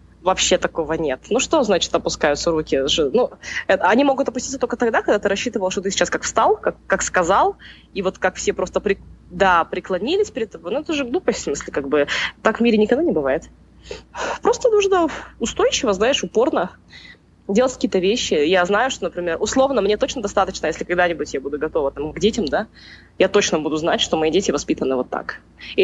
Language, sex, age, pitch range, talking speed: Russian, female, 20-39, 165-230 Hz, 195 wpm